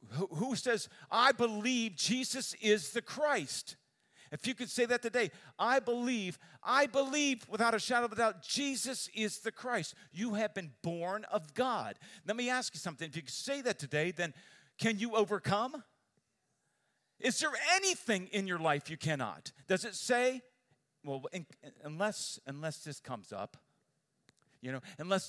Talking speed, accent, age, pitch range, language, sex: 165 wpm, American, 50-69, 140-210 Hz, English, male